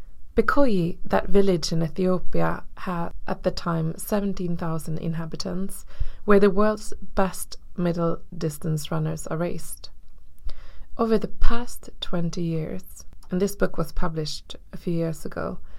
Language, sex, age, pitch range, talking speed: Swedish, female, 20-39, 155-195 Hz, 130 wpm